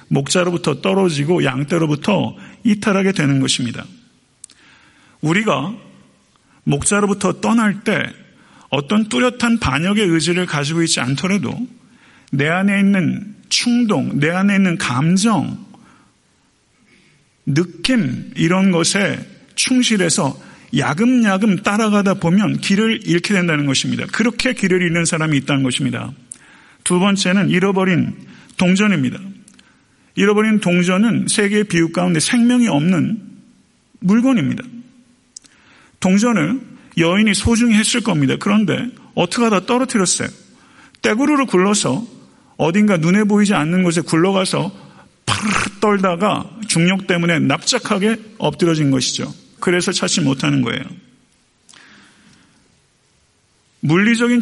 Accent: native